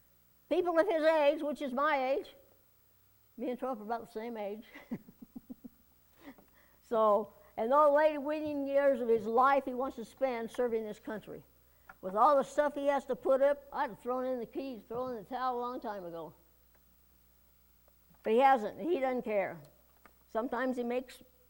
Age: 60-79